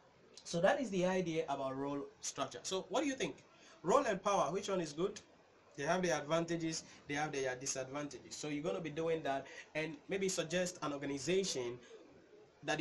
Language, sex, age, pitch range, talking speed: English, male, 20-39, 135-180 Hz, 190 wpm